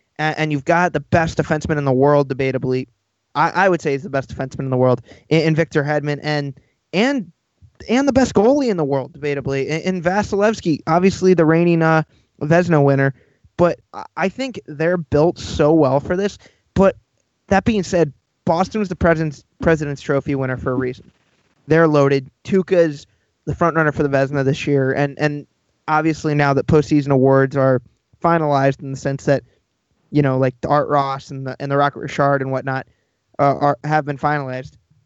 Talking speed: 180 wpm